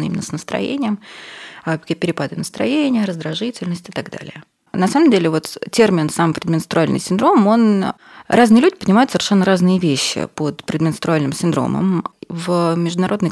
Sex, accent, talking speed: female, native, 130 wpm